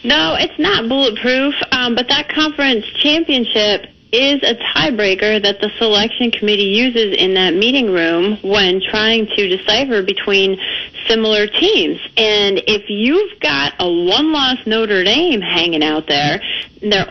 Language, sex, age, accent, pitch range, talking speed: English, female, 30-49, American, 190-250 Hz, 140 wpm